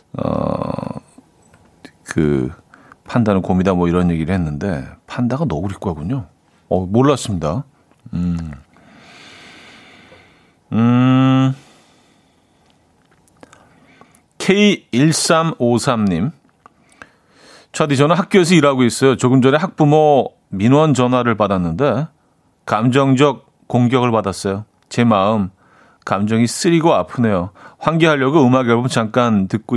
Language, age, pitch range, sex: Korean, 40-59, 100-140 Hz, male